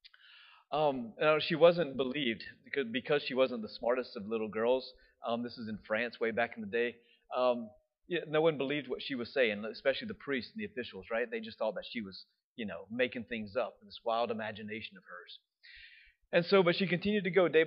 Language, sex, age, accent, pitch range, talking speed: English, male, 30-49, American, 115-170 Hz, 225 wpm